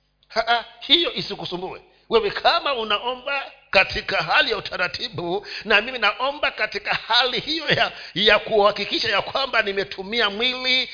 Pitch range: 190-260 Hz